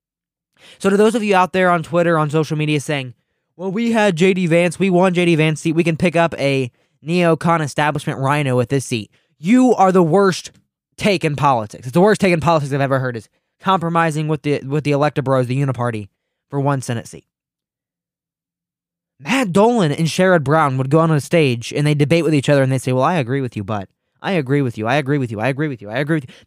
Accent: American